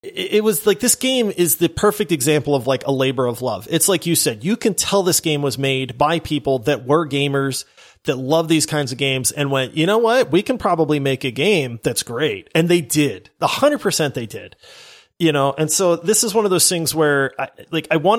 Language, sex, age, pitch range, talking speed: English, male, 30-49, 145-205 Hz, 240 wpm